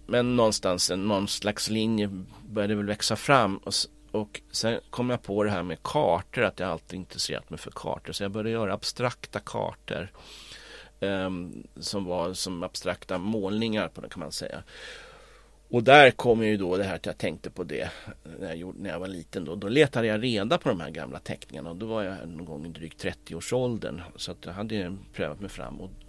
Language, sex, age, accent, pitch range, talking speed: Swedish, male, 40-59, native, 90-110 Hz, 205 wpm